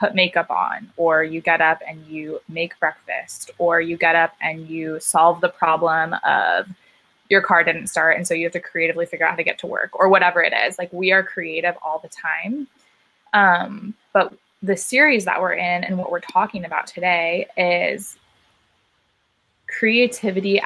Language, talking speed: English, 185 wpm